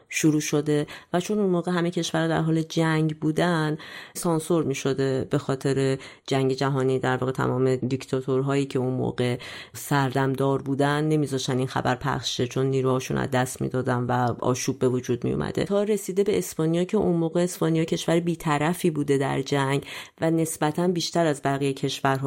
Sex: female